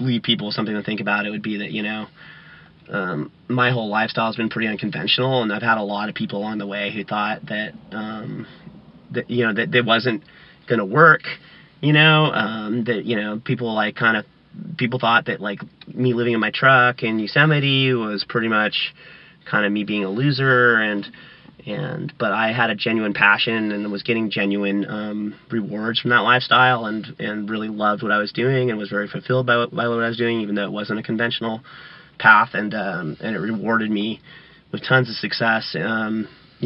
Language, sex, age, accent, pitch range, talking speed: English, male, 30-49, American, 105-120 Hz, 210 wpm